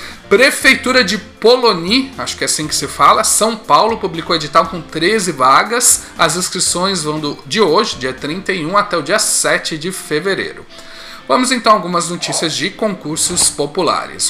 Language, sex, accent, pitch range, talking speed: Portuguese, male, Brazilian, 155-215 Hz, 160 wpm